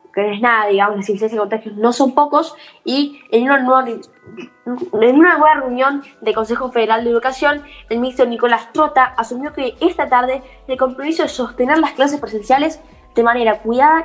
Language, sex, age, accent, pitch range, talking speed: Spanish, female, 10-29, Argentinian, 220-285 Hz, 190 wpm